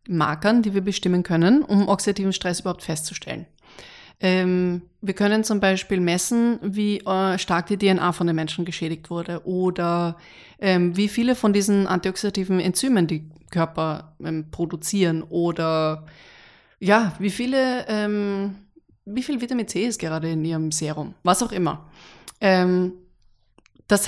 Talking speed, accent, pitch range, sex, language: 130 wpm, German, 165-205 Hz, female, German